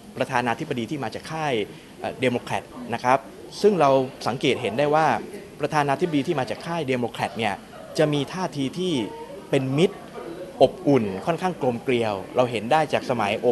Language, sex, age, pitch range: Thai, male, 20-39, 115-155 Hz